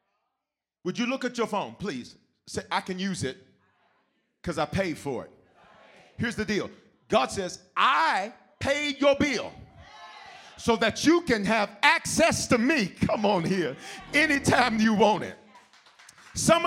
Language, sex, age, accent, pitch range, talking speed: English, male, 40-59, American, 210-300 Hz, 150 wpm